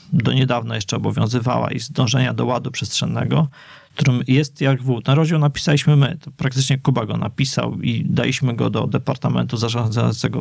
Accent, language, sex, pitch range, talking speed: native, Polish, male, 125-150 Hz, 160 wpm